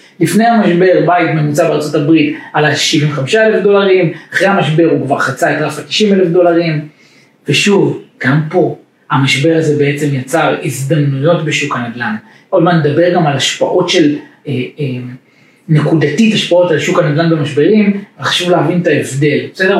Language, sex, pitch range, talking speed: Hebrew, male, 145-185 Hz, 160 wpm